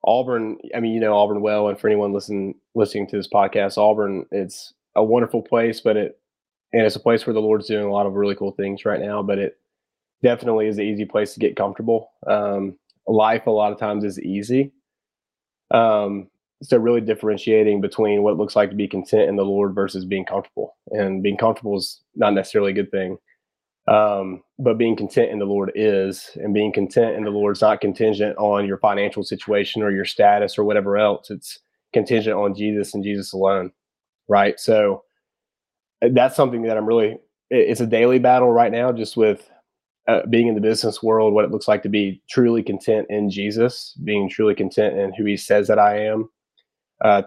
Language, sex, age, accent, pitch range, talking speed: English, male, 20-39, American, 100-110 Hz, 200 wpm